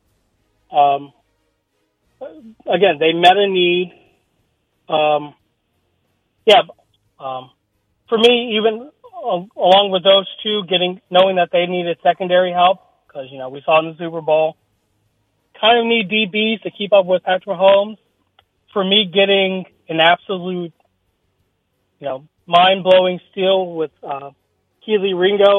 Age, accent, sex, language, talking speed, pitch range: 30-49, American, male, English, 130 wpm, 150-195 Hz